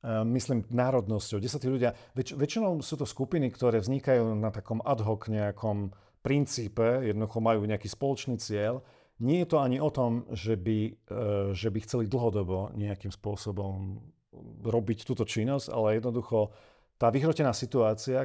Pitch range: 105-125 Hz